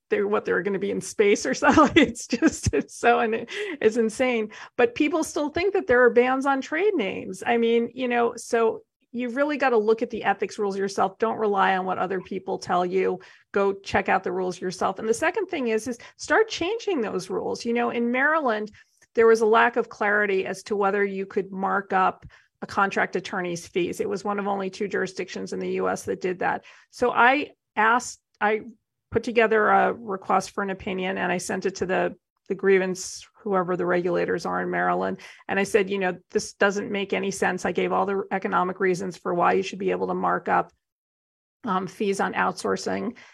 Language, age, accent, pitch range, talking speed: English, 40-59, American, 195-245 Hz, 210 wpm